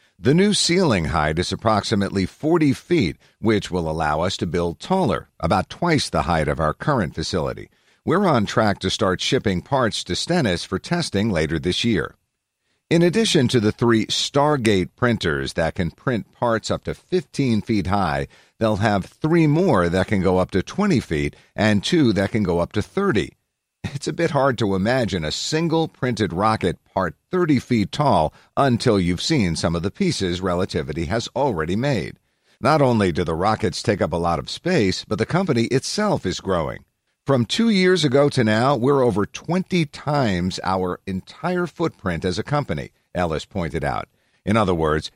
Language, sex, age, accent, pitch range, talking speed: English, male, 50-69, American, 90-135 Hz, 180 wpm